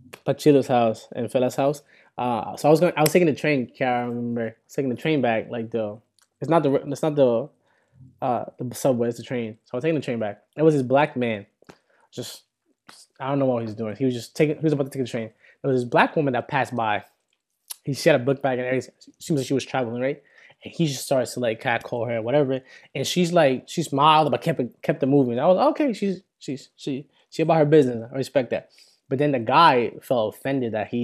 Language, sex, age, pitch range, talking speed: English, male, 20-39, 120-150 Hz, 265 wpm